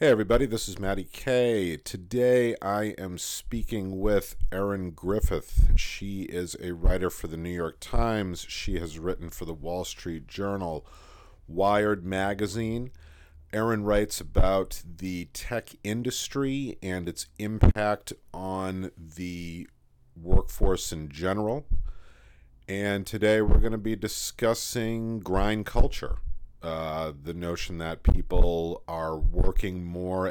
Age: 40-59